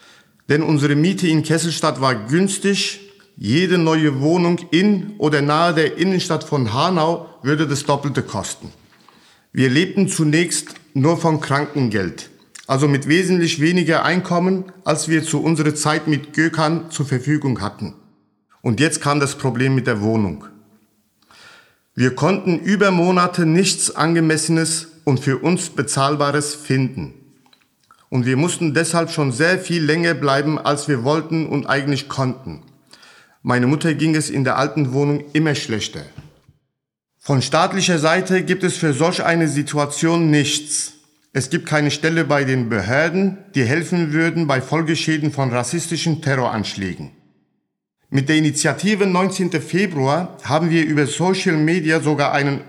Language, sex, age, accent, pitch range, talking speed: German, male, 50-69, German, 140-165 Hz, 140 wpm